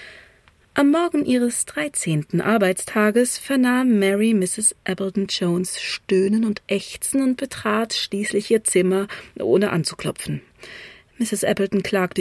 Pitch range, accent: 180-220 Hz, German